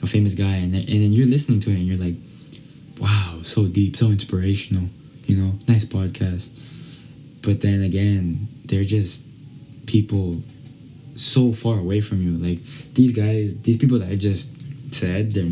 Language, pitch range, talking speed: English, 100-135 Hz, 160 wpm